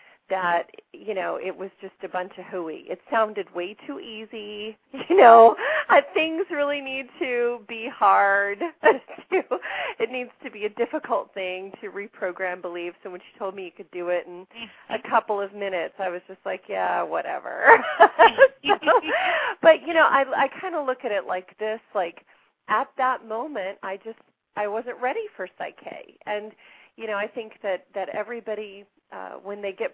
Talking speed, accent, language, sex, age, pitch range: 175 wpm, American, English, female, 30-49, 195-260 Hz